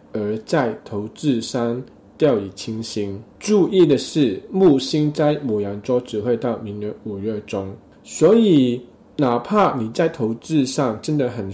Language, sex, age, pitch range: Chinese, male, 20-39, 100-135 Hz